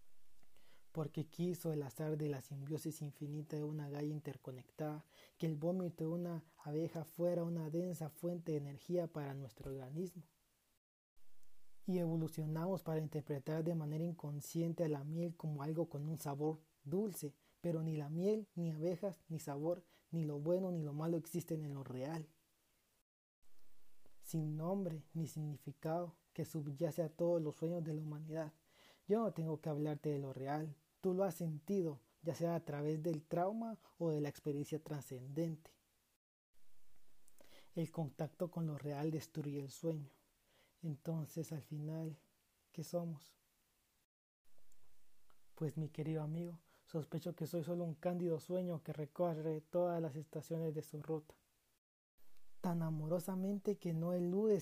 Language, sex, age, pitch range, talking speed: Spanish, male, 30-49, 150-170 Hz, 145 wpm